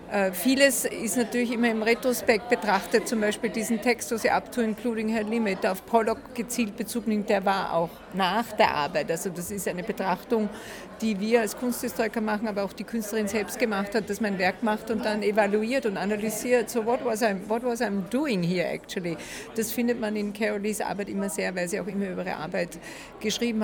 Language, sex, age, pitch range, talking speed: German, female, 50-69, 195-230 Hz, 210 wpm